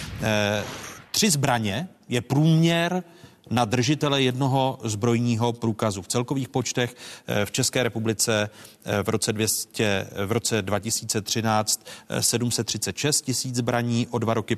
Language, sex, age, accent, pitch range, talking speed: Czech, male, 40-59, native, 105-130 Hz, 105 wpm